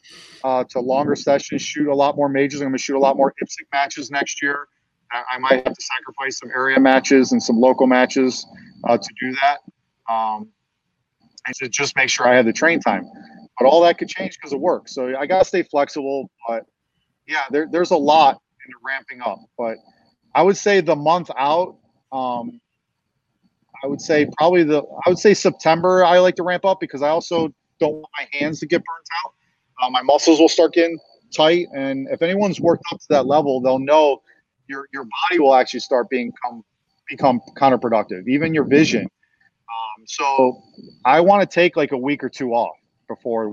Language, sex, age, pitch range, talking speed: English, male, 30-49, 125-155 Hz, 205 wpm